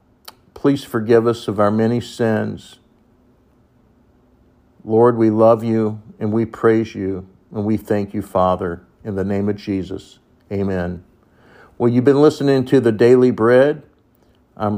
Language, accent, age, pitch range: English, American, 50-69, 100-125 Hz